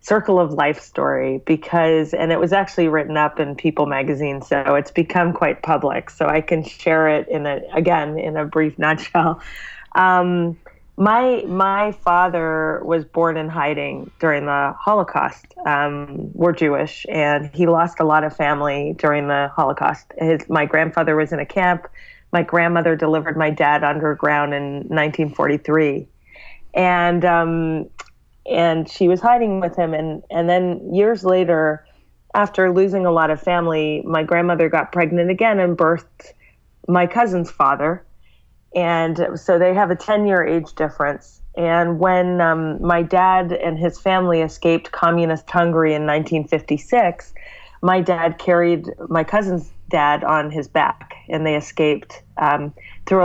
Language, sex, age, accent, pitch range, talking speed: English, female, 30-49, American, 150-175 Hz, 150 wpm